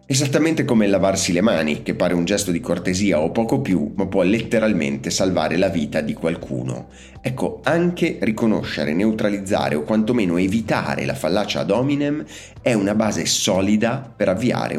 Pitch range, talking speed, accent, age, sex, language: 85-115 Hz, 160 wpm, native, 30-49, male, Italian